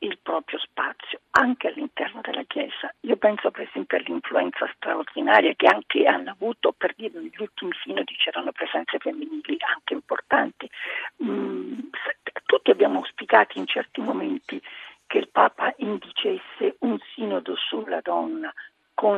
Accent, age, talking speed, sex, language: native, 50-69, 130 wpm, female, Italian